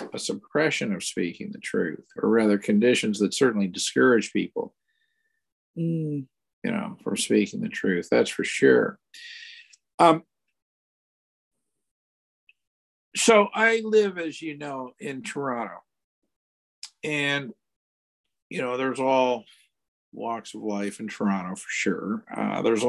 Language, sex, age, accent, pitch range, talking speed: English, male, 50-69, American, 100-160 Hz, 120 wpm